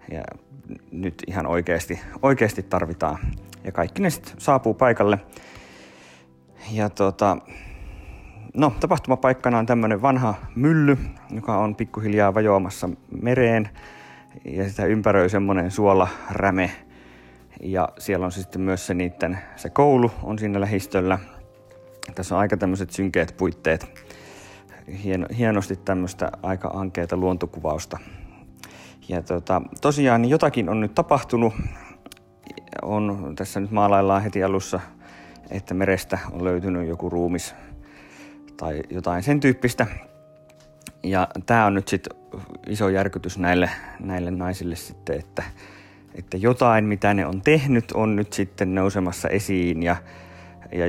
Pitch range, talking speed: 90-105 Hz, 120 wpm